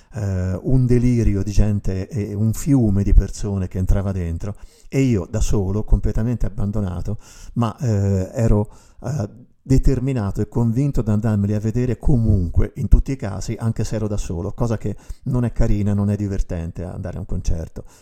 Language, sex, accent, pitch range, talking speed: Italian, male, native, 95-115 Hz, 165 wpm